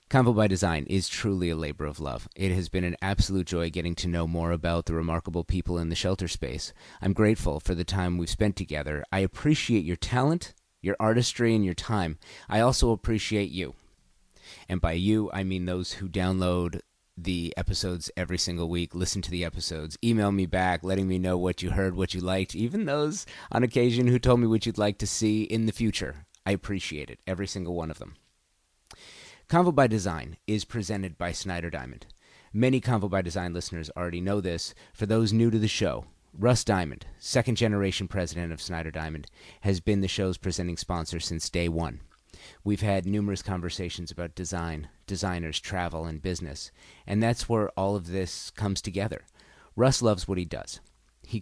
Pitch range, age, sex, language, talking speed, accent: 85-105 Hz, 30-49, male, English, 190 wpm, American